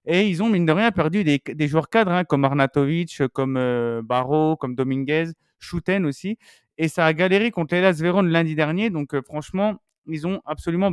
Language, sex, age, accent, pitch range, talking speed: French, male, 30-49, French, 135-175 Hz, 200 wpm